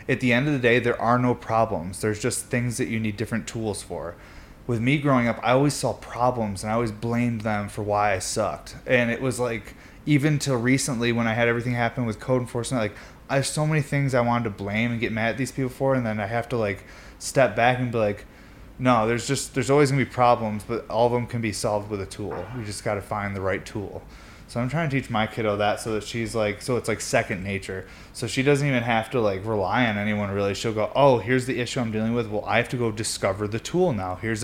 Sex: male